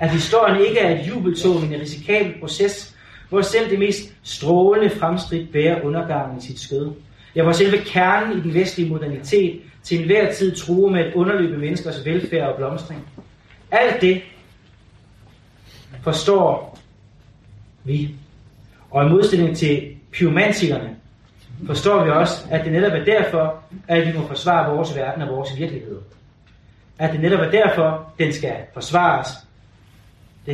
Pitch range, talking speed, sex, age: 125-170 Hz, 150 wpm, male, 30-49